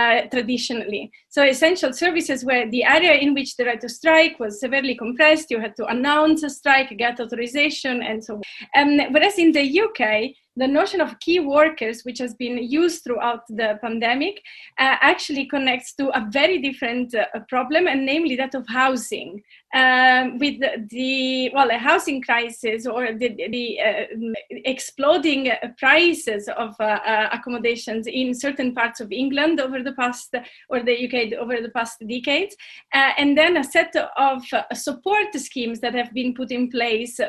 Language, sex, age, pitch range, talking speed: English, female, 30-49, 240-295 Hz, 175 wpm